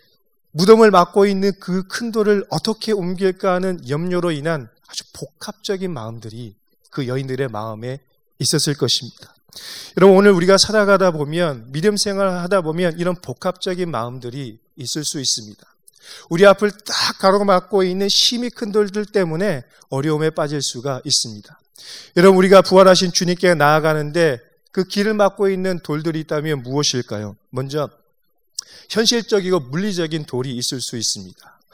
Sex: male